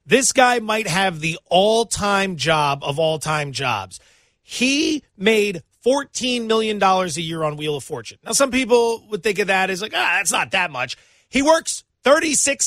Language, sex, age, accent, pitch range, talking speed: English, male, 30-49, American, 190-245 Hz, 175 wpm